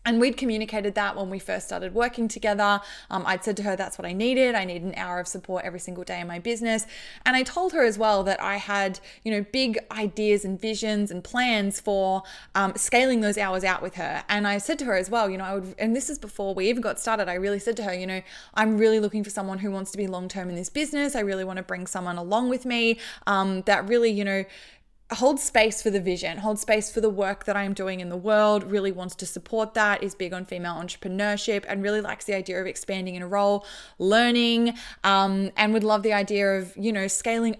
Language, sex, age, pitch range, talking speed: English, female, 20-39, 190-225 Hz, 250 wpm